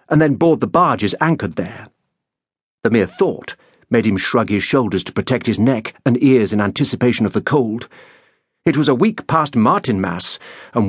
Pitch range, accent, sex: 115-165 Hz, British, male